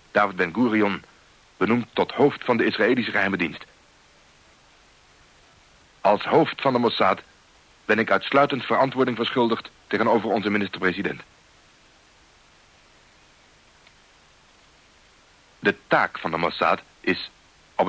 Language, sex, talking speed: Dutch, male, 100 wpm